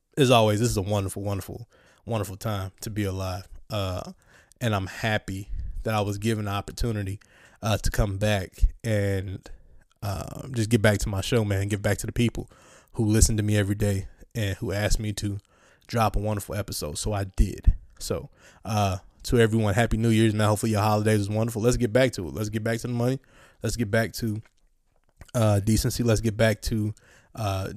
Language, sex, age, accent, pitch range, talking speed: English, male, 20-39, American, 100-115 Hz, 205 wpm